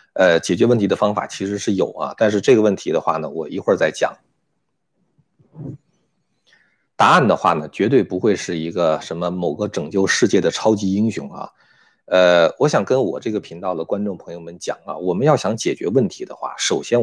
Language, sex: Chinese, male